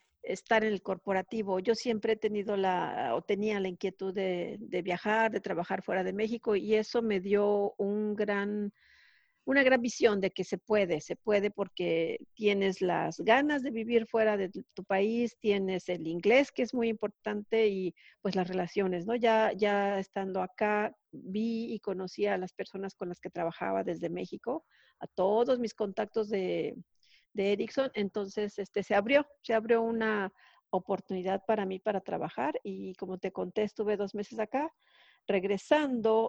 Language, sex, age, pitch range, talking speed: Spanish, female, 50-69, 190-220 Hz, 170 wpm